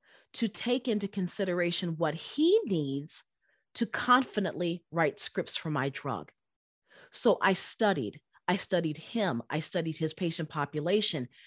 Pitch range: 165-225 Hz